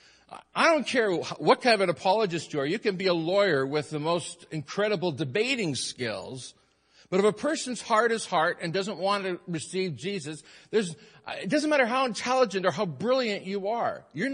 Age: 50-69